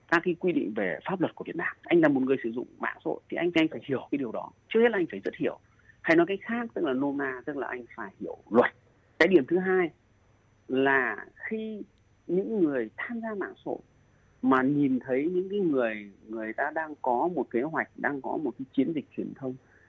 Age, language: 30-49, Vietnamese